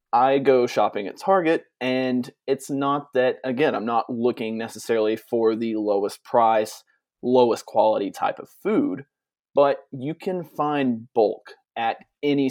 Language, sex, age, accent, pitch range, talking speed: English, male, 20-39, American, 110-140 Hz, 145 wpm